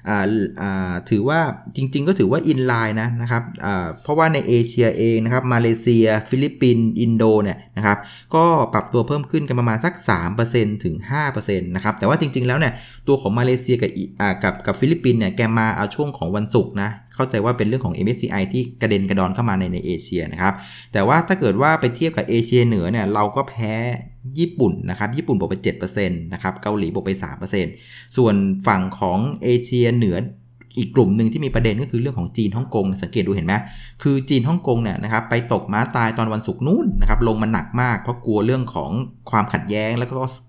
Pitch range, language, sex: 100-125 Hz, Thai, male